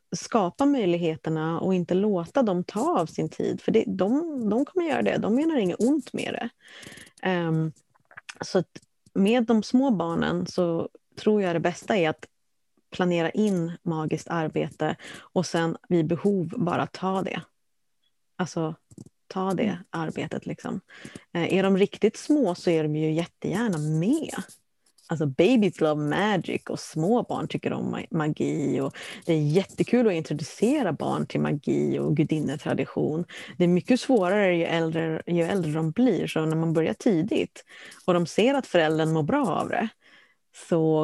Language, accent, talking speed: Swedish, native, 165 wpm